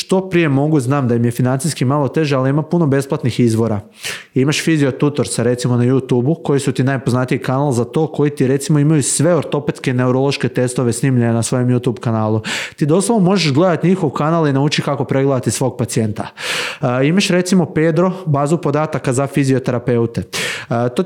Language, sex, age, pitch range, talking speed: Croatian, male, 20-39, 125-170 Hz, 175 wpm